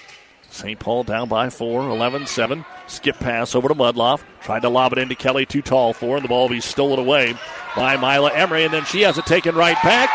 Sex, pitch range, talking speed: male, 125-160 Hz, 225 wpm